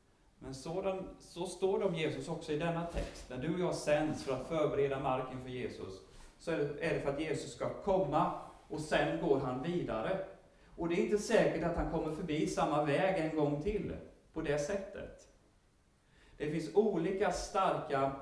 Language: Swedish